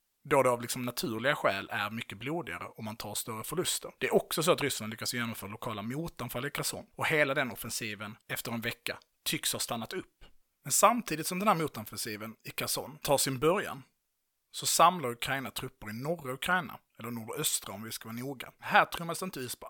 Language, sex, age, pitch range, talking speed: Swedish, male, 30-49, 120-155 Hz, 205 wpm